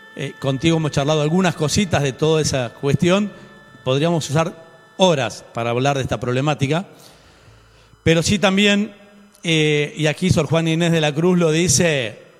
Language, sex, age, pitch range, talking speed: Spanish, male, 40-59, 140-185 Hz, 155 wpm